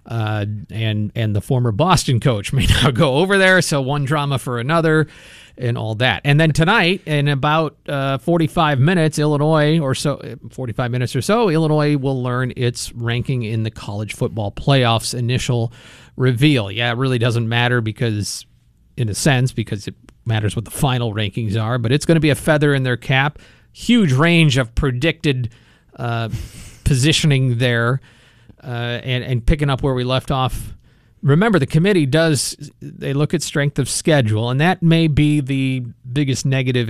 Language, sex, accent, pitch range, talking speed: English, male, American, 115-150 Hz, 175 wpm